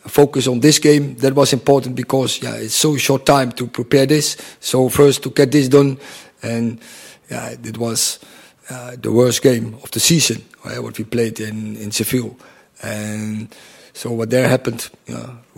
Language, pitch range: English, 115-135 Hz